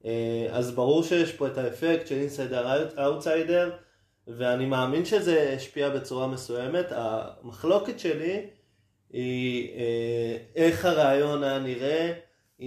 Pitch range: 115-145 Hz